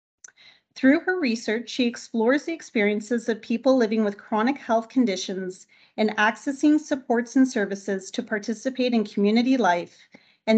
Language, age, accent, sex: English, 40-59, American, female